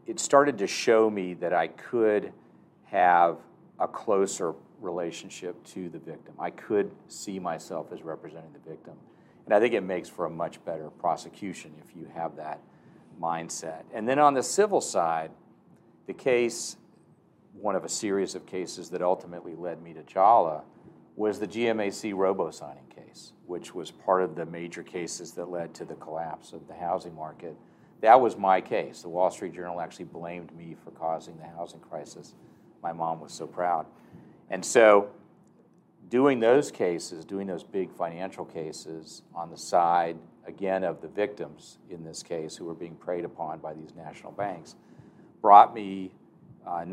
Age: 50-69